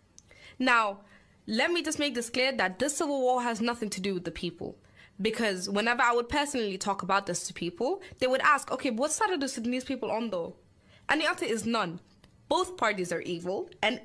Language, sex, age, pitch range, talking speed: English, female, 20-39, 195-275 Hz, 215 wpm